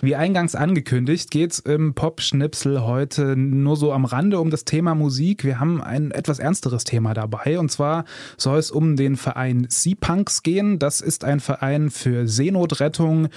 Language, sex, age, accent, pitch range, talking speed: German, male, 20-39, German, 125-150 Hz, 170 wpm